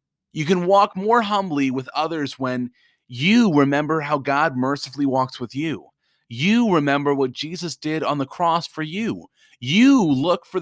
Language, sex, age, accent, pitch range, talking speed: English, male, 30-49, American, 135-185 Hz, 165 wpm